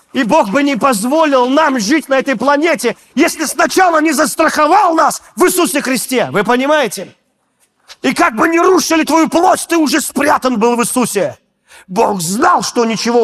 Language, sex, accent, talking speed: Russian, male, native, 170 wpm